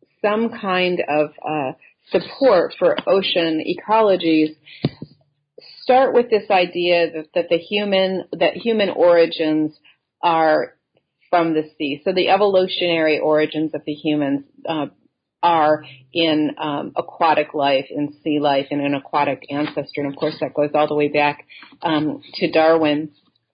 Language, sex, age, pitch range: English, female, 40-59, 155-210 Hz